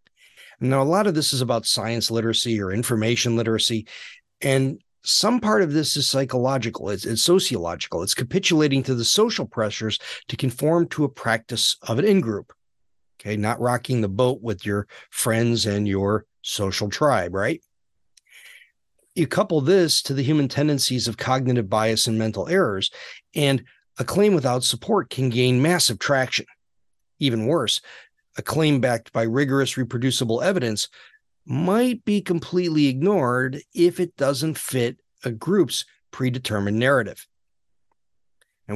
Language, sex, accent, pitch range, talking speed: English, male, American, 110-150 Hz, 145 wpm